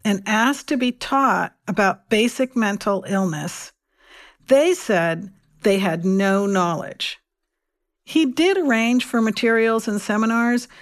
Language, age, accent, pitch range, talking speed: English, 60-79, American, 205-270 Hz, 120 wpm